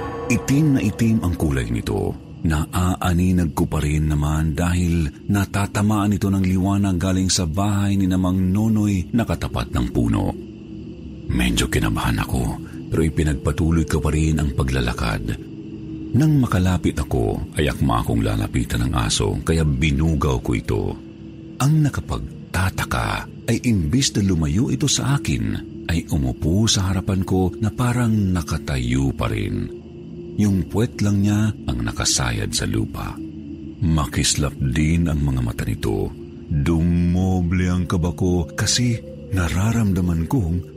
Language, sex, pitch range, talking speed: Filipino, male, 75-105 Hz, 125 wpm